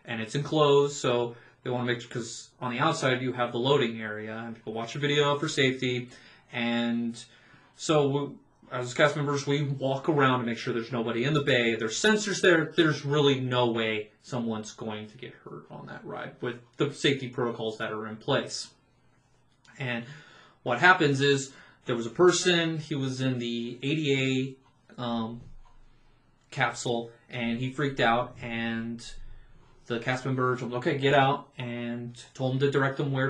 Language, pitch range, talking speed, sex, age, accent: English, 120-145 Hz, 175 wpm, male, 20-39, American